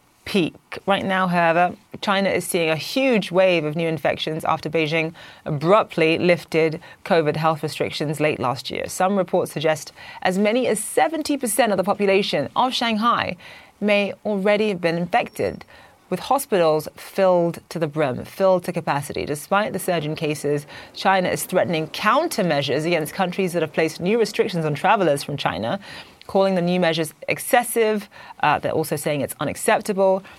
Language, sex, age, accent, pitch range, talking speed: English, female, 30-49, British, 155-195 Hz, 160 wpm